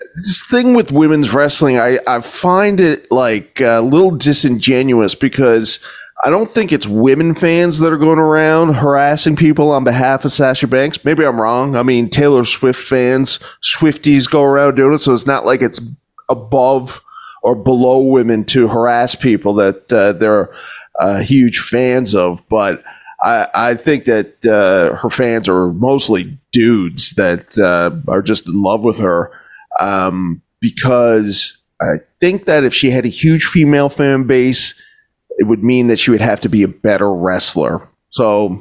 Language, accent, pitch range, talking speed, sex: English, American, 110-145 Hz, 170 wpm, male